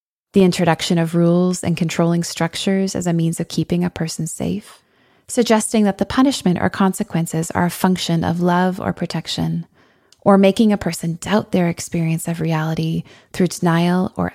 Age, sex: 20-39, female